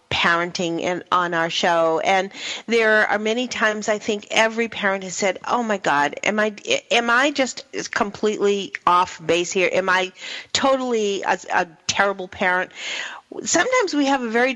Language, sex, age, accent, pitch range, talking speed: English, female, 40-59, American, 185-270 Hz, 155 wpm